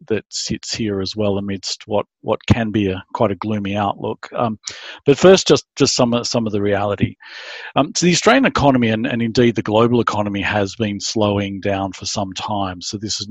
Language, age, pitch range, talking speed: English, 50-69, 95-110 Hz, 205 wpm